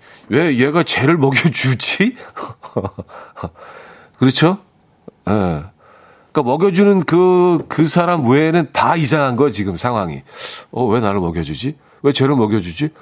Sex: male